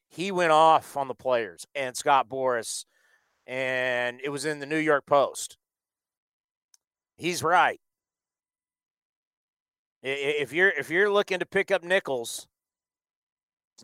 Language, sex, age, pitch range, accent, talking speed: English, male, 40-59, 145-210 Hz, American, 120 wpm